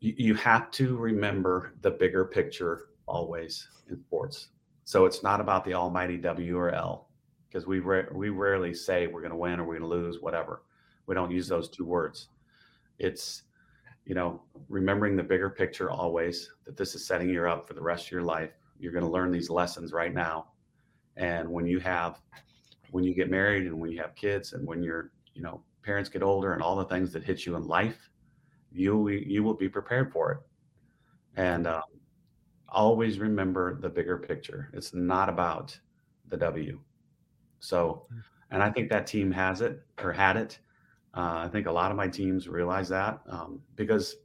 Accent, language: American, English